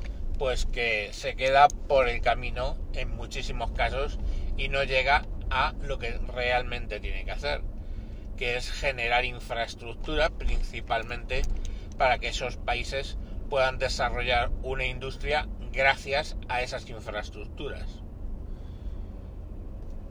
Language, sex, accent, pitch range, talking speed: Spanish, male, Spanish, 90-130 Hz, 110 wpm